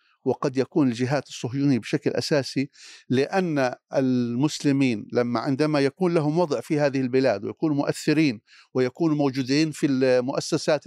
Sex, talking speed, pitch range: male, 120 wpm, 140-195 Hz